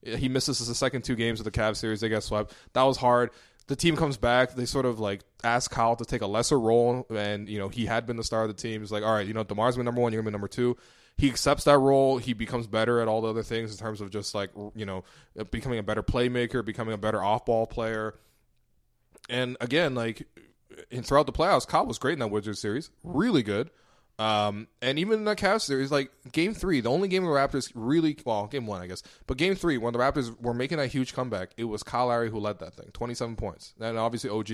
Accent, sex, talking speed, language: American, male, 255 wpm, English